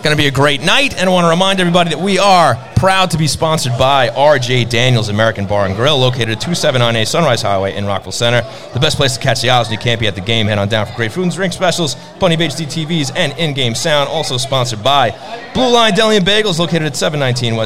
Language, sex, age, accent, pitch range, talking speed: English, male, 30-49, American, 120-175 Hz, 250 wpm